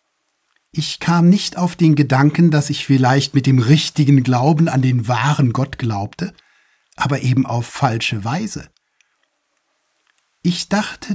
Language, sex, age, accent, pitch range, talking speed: German, male, 60-79, German, 125-175 Hz, 135 wpm